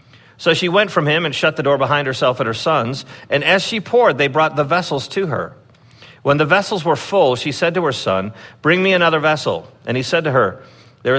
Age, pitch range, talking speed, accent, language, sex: 50-69, 110-145 Hz, 235 wpm, American, English, male